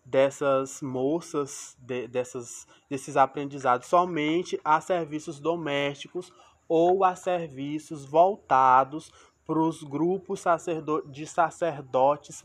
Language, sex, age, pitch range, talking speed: Portuguese, male, 20-39, 135-170 Hz, 80 wpm